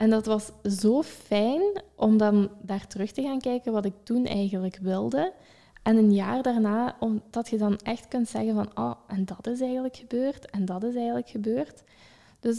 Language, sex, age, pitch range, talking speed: Dutch, female, 10-29, 195-235 Hz, 195 wpm